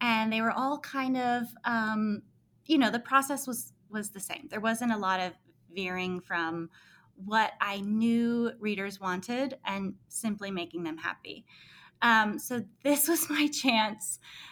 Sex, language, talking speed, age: female, English, 155 wpm, 20-39